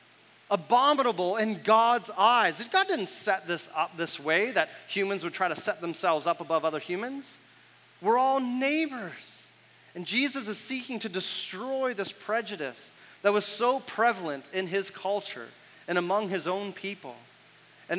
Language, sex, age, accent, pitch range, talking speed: English, male, 30-49, American, 150-215 Hz, 155 wpm